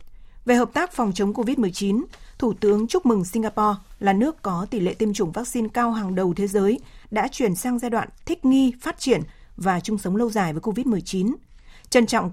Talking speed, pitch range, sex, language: 205 wpm, 195-245 Hz, female, Vietnamese